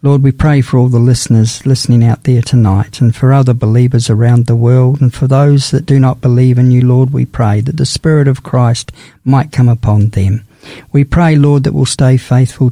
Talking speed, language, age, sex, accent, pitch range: 215 wpm, English, 50-69, male, Australian, 120-140 Hz